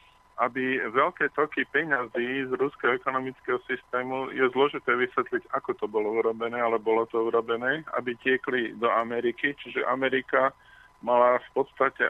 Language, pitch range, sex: Slovak, 120-135 Hz, male